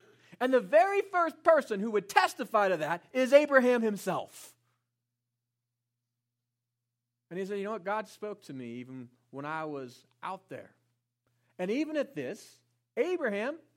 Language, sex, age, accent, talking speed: English, male, 40-59, American, 150 wpm